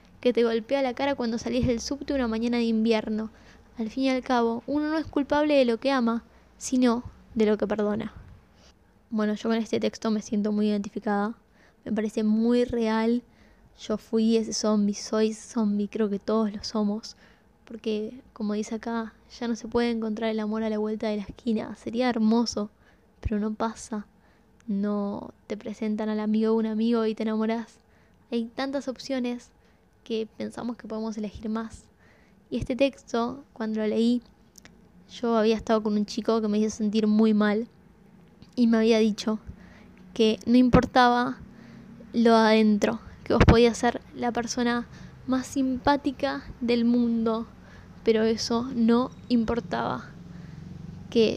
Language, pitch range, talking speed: Spanish, 215-245 Hz, 160 wpm